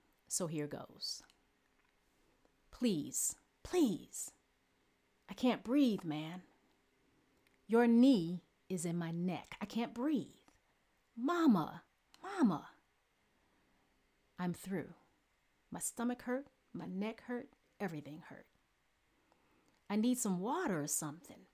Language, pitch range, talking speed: Ukrainian, 175-245 Hz, 100 wpm